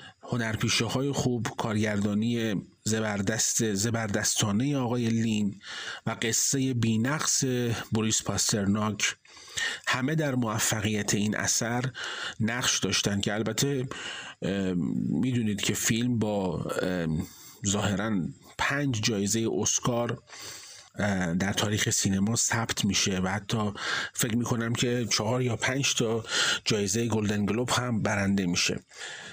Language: Persian